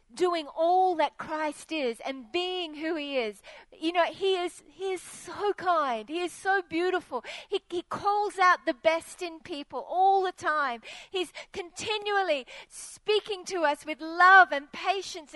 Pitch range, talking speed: 315-380 Hz, 165 wpm